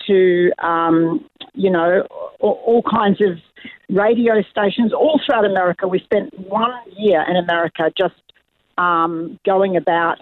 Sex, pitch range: female, 185-220 Hz